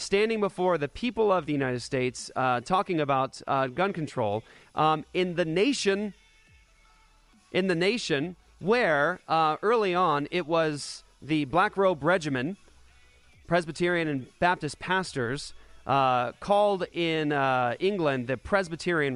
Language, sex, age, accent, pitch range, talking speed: English, male, 30-49, American, 140-180 Hz, 130 wpm